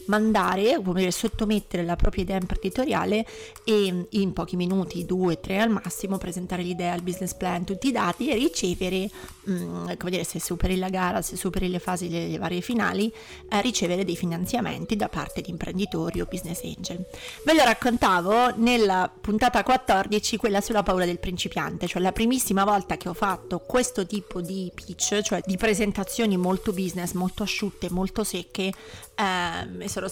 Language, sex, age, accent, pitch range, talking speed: Italian, female, 30-49, native, 180-220 Hz, 160 wpm